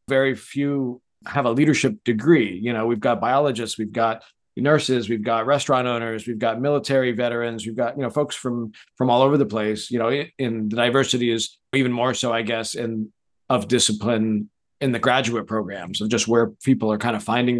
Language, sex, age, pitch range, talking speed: English, male, 40-59, 110-125 Hz, 205 wpm